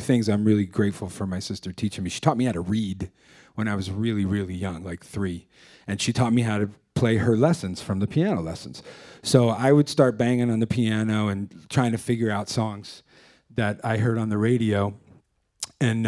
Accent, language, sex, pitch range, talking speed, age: American, English, male, 100-125 Hz, 215 wpm, 40-59